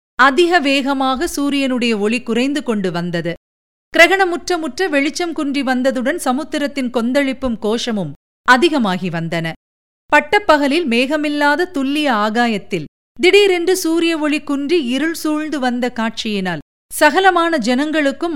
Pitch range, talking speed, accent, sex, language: 235-305 Hz, 100 wpm, native, female, Tamil